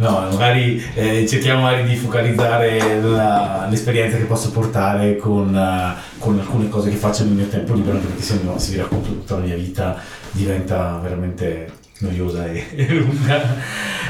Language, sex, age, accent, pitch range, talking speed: Italian, male, 30-49, native, 105-125 Hz, 160 wpm